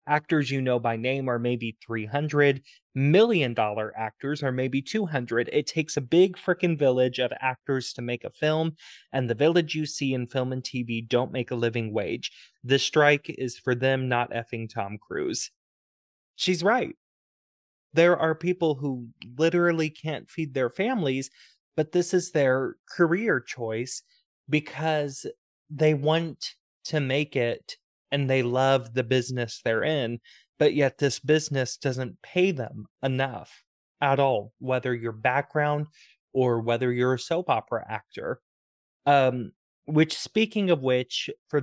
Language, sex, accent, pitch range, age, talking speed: English, male, American, 120-155 Hz, 20-39, 150 wpm